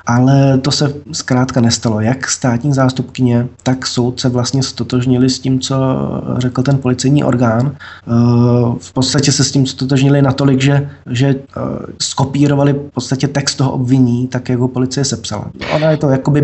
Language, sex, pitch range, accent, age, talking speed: Czech, male, 125-135 Hz, native, 20-39, 160 wpm